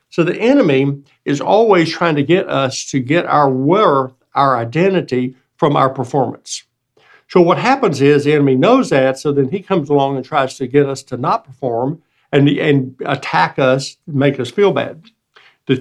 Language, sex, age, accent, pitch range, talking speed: English, male, 60-79, American, 130-170 Hz, 185 wpm